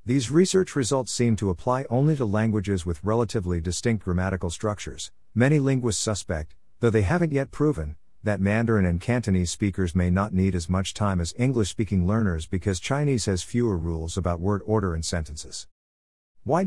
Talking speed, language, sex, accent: 170 wpm, English, male, American